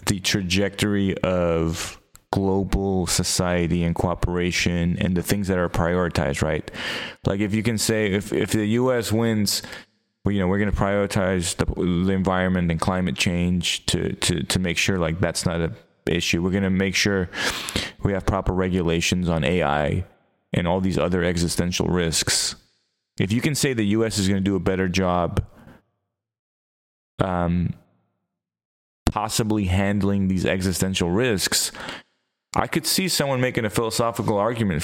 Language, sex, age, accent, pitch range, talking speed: English, male, 30-49, American, 90-105 Hz, 160 wpm